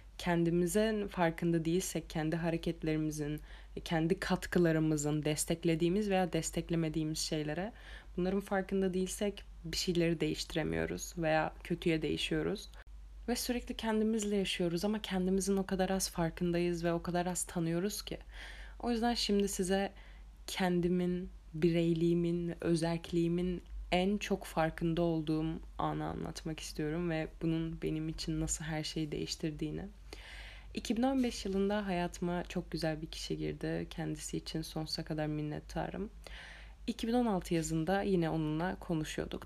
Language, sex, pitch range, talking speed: Turkish, female, 155-190 Hz, 115 wpm